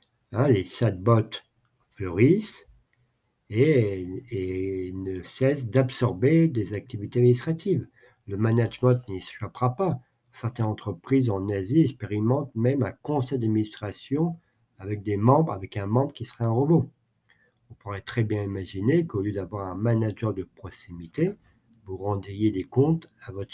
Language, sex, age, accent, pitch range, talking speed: French, male, 50-69, French, 105-130 Hz, 140 wpm